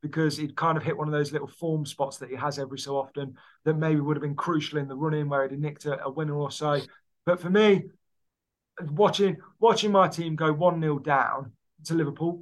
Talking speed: 220 wpm